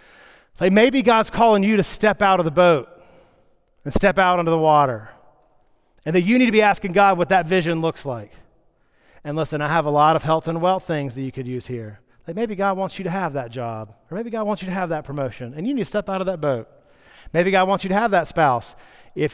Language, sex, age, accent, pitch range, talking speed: English, male, 30-49, American, 145-205 Hz, 255 wpm